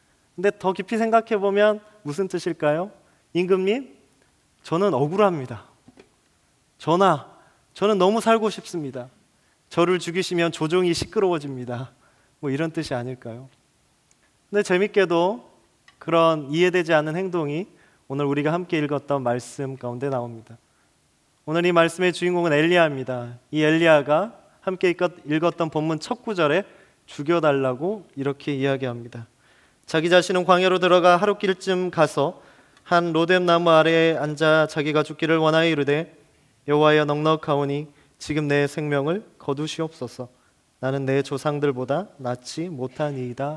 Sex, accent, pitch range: male, native, 140-180 Hz